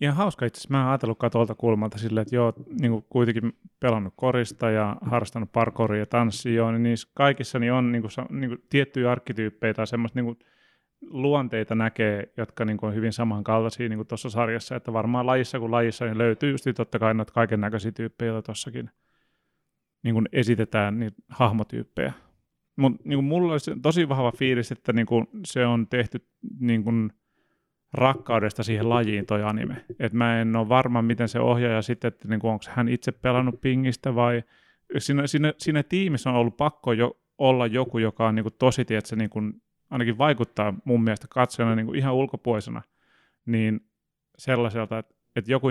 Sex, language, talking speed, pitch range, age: male, Finnish, 160 wpm, 115-130 Hz, 30-49